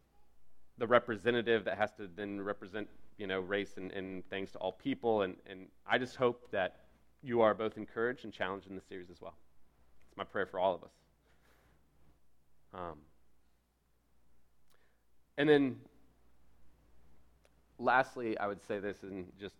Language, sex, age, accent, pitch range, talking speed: English, male, 30-49, American, 75-115 Hz, 155 wpm